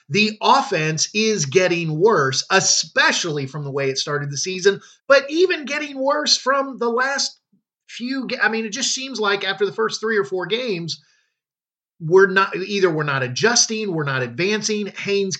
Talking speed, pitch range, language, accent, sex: 175 wpm, 155-220 Hz, English, American, male